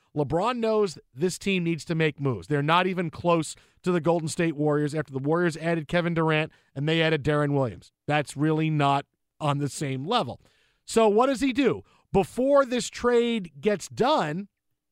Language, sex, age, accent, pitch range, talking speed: English, male, 40-59, American, 160-210 Hz, 180 wpm